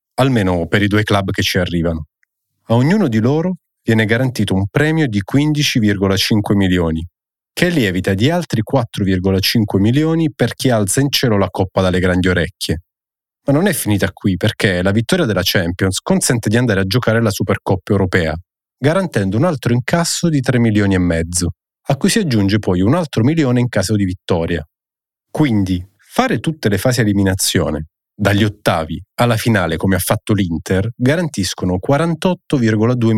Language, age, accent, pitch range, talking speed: Italian, 30-49, native, 95-125 Hz, 165 wpm